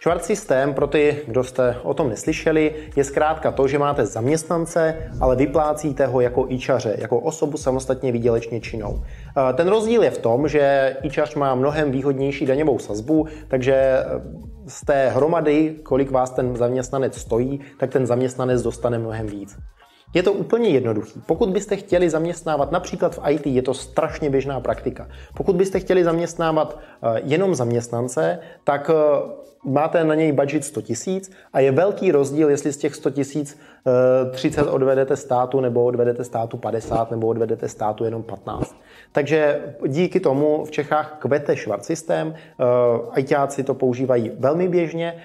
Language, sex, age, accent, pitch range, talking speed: Czech, male, 20-39, native, 125-155 Hz, 150 wpm